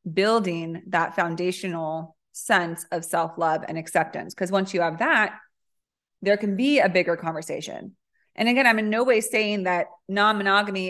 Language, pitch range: English, 170-220 Hz